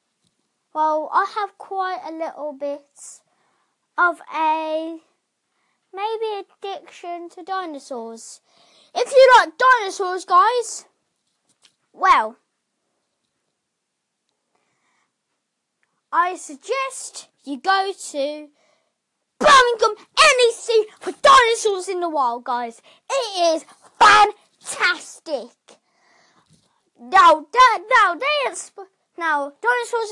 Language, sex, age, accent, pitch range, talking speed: English, female, 20-39, British, 305-395 Hz, 80 wpm